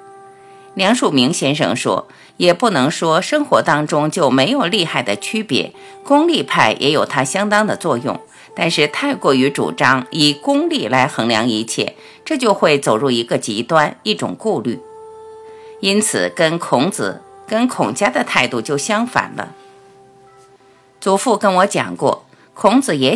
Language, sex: Chinese, female